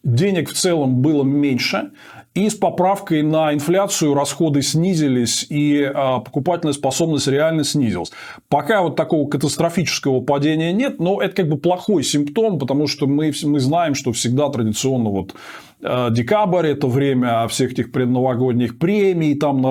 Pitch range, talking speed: 130-165 Hz, 145 wpm